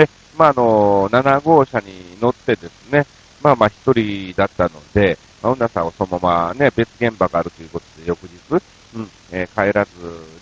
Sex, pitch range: male, 90-120 Hz